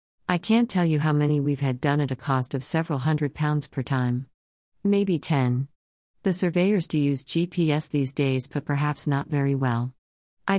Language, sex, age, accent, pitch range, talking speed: English, female, 50-69, American, 130-160 Hz, 185 wpm